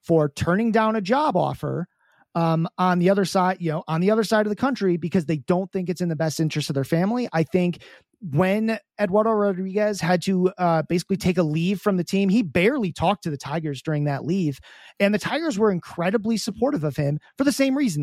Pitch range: 165-210 Hz